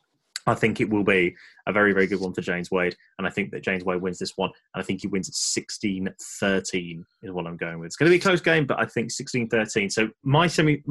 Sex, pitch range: male, 100-135 Hz